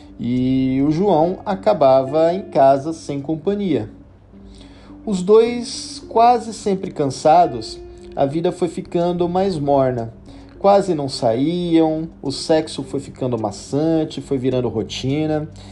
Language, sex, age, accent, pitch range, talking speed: Portuguese, male, 40-59, Brazilian, 130-180 Hz, 115 wpm